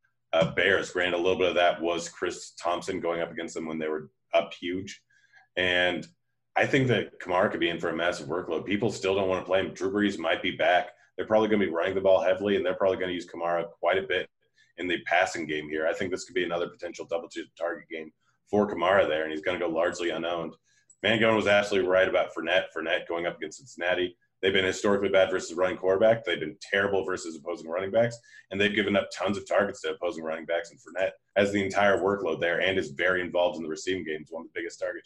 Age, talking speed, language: 30-49, 250 wpm, English